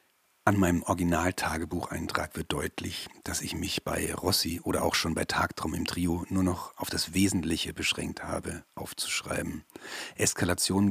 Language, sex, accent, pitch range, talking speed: German, male, German, 85-100 Hz, 145 wpm